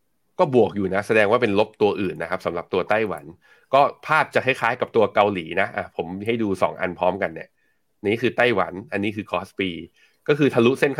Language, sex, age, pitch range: Thai, male, 20-39, 95-120 Hz